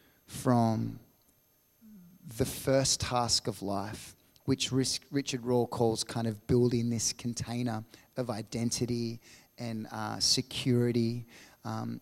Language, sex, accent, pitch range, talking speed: English, male, Australian, 115-135 Hz, 105 wpm